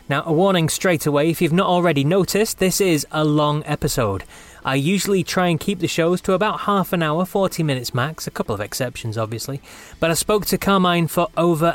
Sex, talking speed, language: male, 215 wpm, English